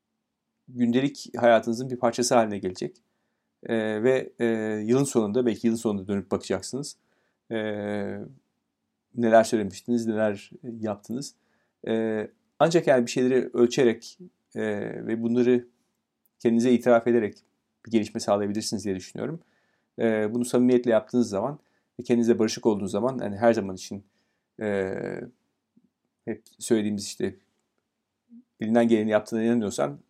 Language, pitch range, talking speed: Turkish, 105-120 Hz, 120 wpm